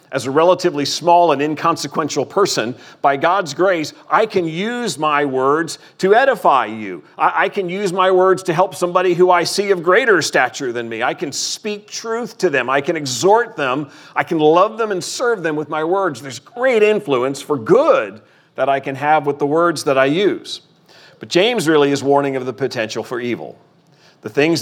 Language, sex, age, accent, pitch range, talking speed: English, male, 40-59, American, 130-175 Hz, 200 wpm